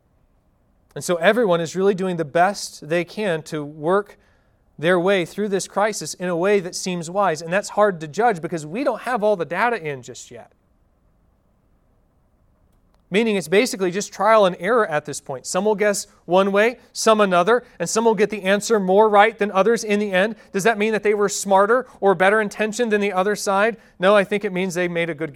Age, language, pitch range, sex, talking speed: 30-49, English, 160-210 Hz, male, 215 wpm